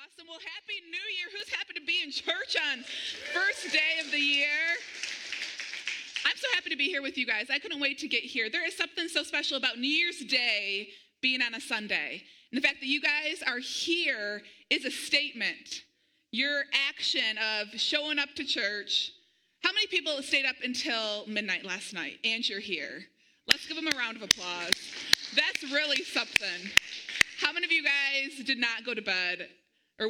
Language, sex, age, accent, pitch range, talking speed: English, female, 30-49, American, 235-310 Hz, 190 wpm